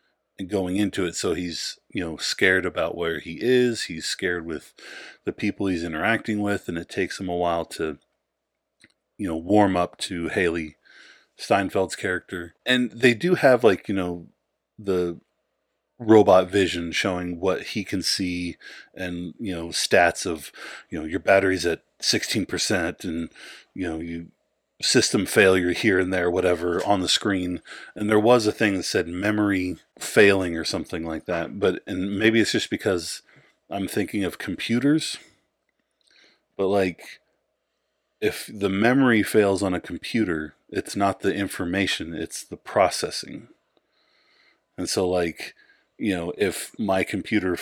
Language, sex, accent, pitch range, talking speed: English, male, American, 85-105 Hz, 155 wpm